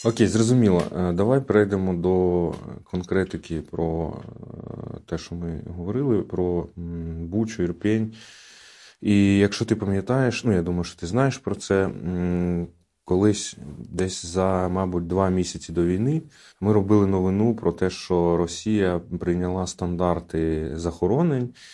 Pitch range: 85-110 Hz